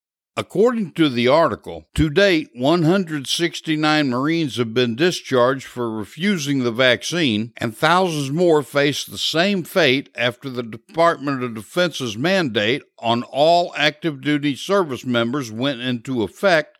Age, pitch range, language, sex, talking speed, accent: 60-79, 120-165 Hz, English, male, 130 wpm, American